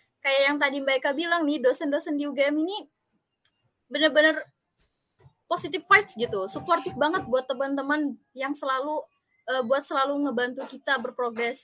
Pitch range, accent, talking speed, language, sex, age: 240-300 Hz, native, 135 wpm, Indonesian, female, 20-39